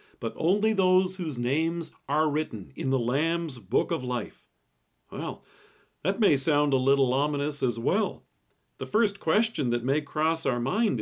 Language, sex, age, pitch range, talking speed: English, male, 50-69, 130-200 Hz, 165 wpm